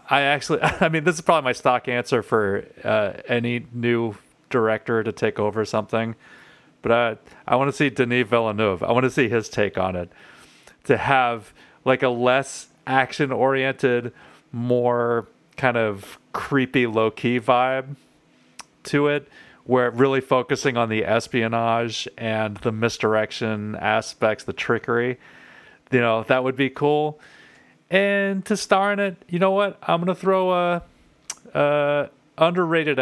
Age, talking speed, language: 30-49, 145 wpm, English